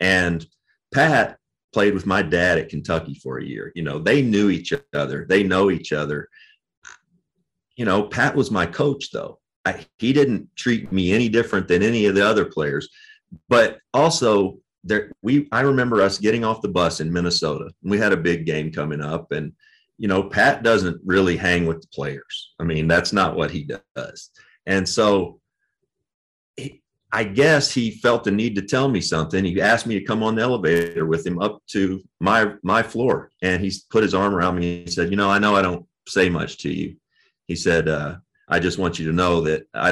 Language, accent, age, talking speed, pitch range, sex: English, American, 40-59, 205 wpm, 80-100 Hz, male